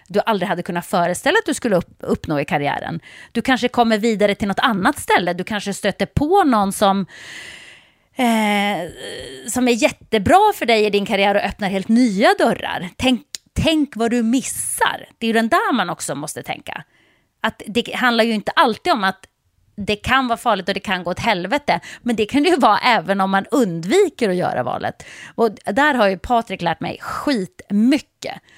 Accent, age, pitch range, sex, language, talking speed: native, 30-49, 185-235 Hz, female, Swedish, 195 wpm